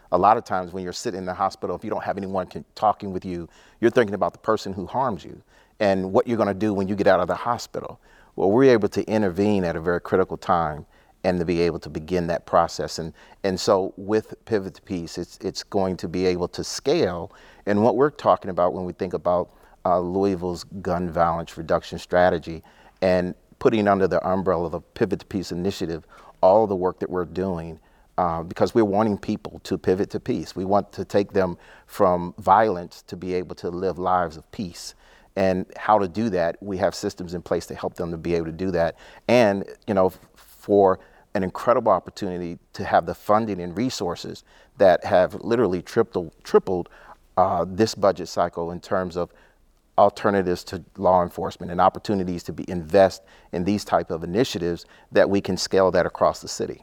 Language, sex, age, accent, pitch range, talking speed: English, male, 40-59, American, 85-100 Hz, 205 wpm